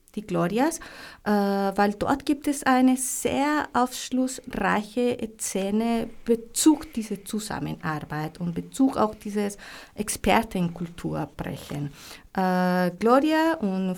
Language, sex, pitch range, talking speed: German, female, 175-220 Hz, 95 wpm